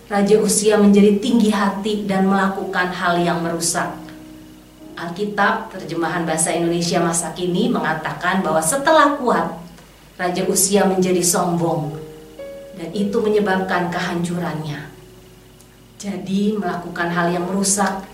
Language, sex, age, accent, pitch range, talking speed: Indonesian, female, 30-49, native, 170-210 Hz, 110 wpm